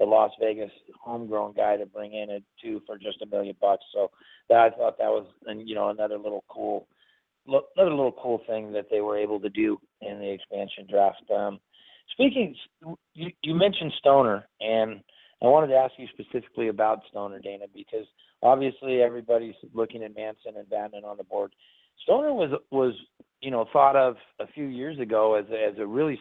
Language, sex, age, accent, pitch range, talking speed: English, male, 30-49, American, 110-135 Hz, 190 wpm